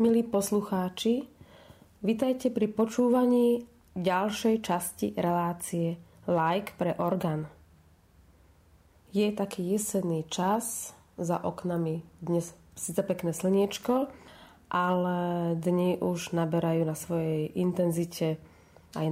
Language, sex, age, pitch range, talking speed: Slovak, female, 30-49, 165-195 Hz, 90 wpm